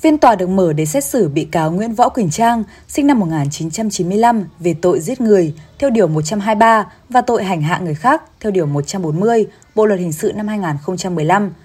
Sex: female